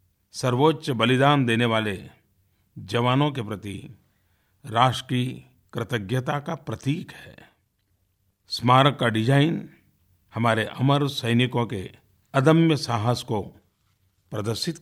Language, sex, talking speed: Hindi, male, 95 wpm